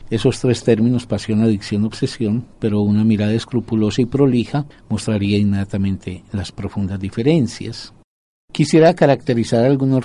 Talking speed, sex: 120 wpm, male